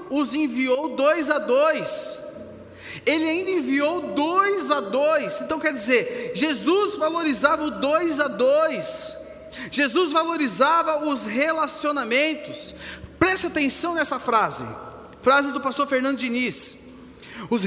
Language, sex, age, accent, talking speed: Portuguese, male, 40-59, Brazilian, 115 wpm